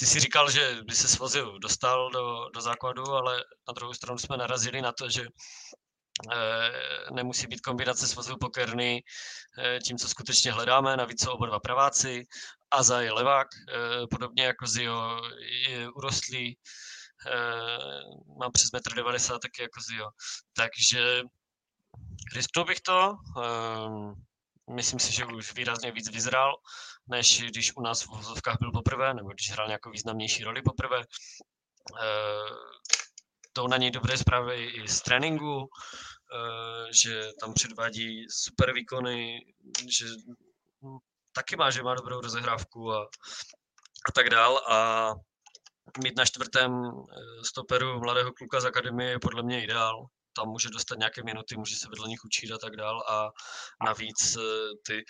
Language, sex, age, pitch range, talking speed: Czech, male, 20-39, 115-125 Hz, 145 wpm